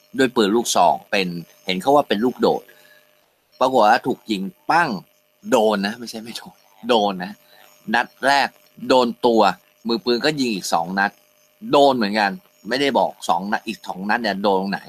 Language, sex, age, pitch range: Thai, male, 20-39, 100-130 Hz